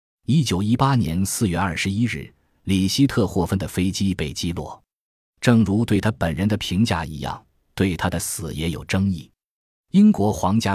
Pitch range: 85-115 Hz